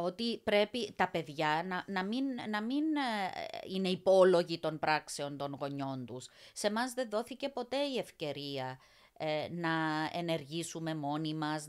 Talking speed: 145 wpm